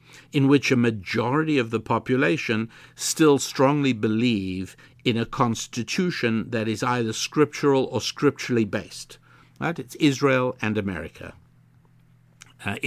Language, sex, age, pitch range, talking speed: English, male, 60-79, 110-130 Hz, 120 wpm